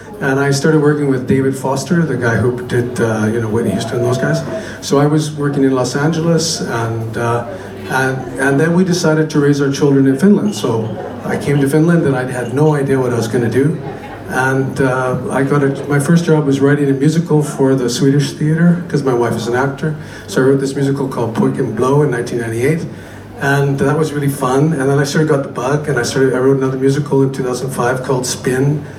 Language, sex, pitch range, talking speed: Finnish, male, 130-150 Hz, 230 wpm